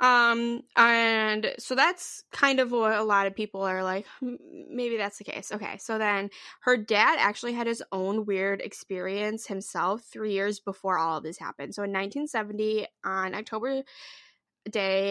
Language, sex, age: English, female, 10-29